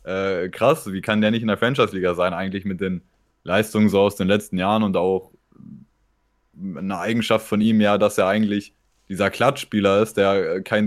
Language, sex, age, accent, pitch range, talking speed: German, male, 20-39, German, 100-115 Hz, 200 wpm